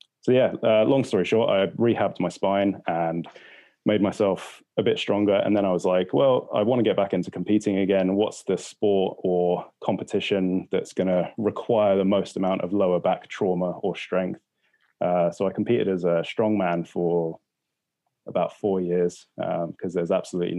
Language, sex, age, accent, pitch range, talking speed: English, male, 20-39, British, 90-105 Hz, 185 wpm